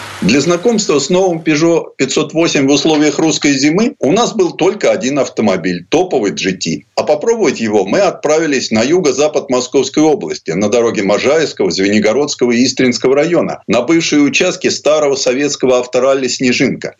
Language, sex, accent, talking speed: Russian, male, native, 150 wpm